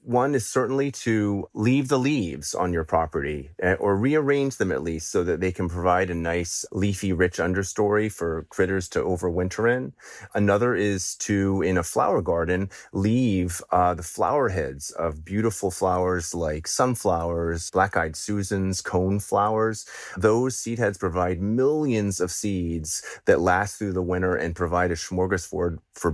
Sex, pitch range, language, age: male, 85-105 Hz, English, 30-49